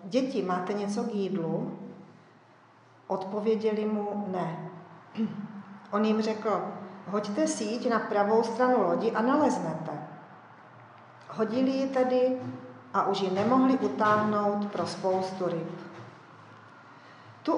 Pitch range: 185-225 Hz